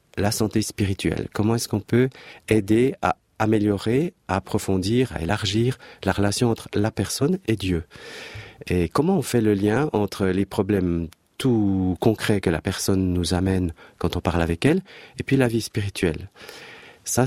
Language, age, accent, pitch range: French, 40-59, French, 95-120 Hz